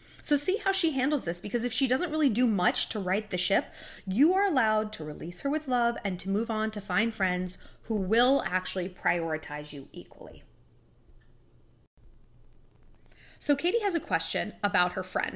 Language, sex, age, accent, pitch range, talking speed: English, female, 20-39, American, 180-255 Hz, 180 wpm